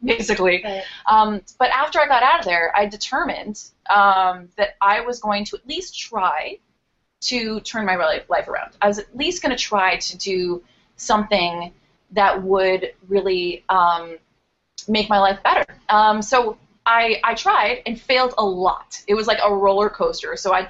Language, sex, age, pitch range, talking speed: English, female, 20-39, 185-220 Hz, 175 wpm